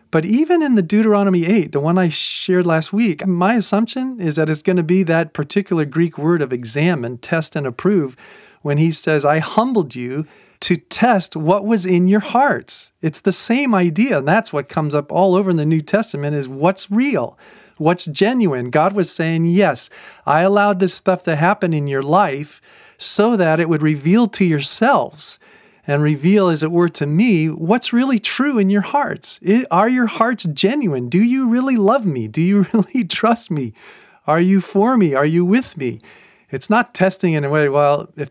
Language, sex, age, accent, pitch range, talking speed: English, male, 40-59, American, 150-200 Hz, 195 wpm